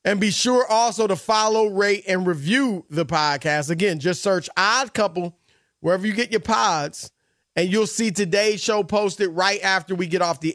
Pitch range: 165-210 Hz